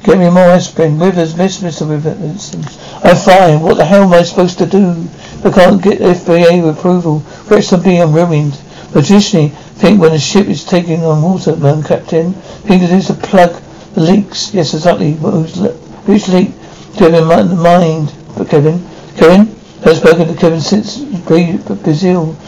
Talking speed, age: 185 wpm, 60-79